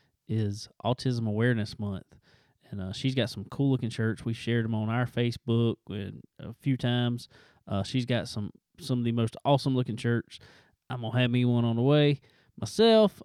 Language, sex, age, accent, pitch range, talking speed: English, male, 20-39, American, 110-130 Hz, 185 wpm